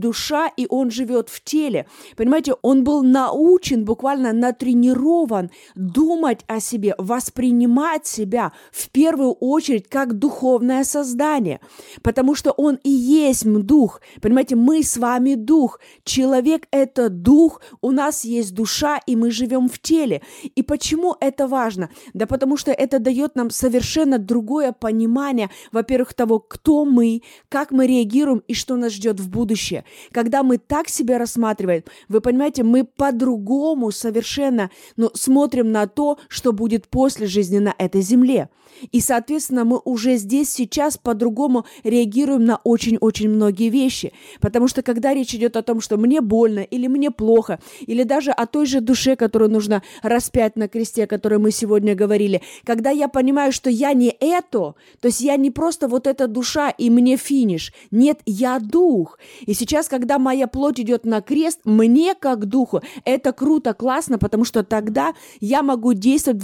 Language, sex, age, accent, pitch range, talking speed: Russian, female, 20-39, native, 230-275 Hz, 160 wpm